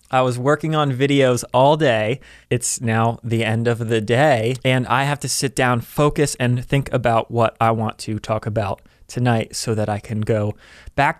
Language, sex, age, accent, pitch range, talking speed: English, male, 30-49, American, 110-135 Hz, 200 wpm